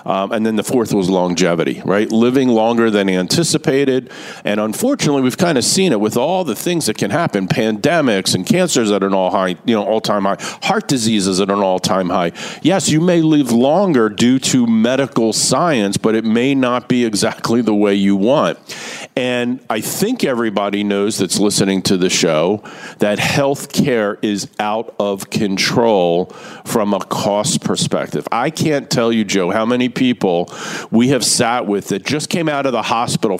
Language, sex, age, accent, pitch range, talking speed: English, male, 50-69, American, 105-155 Hz, 180 wpm